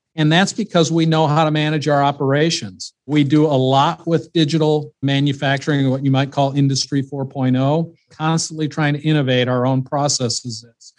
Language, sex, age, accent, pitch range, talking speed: English, male, 50-69, American, 130-155 Hz, 165 wpm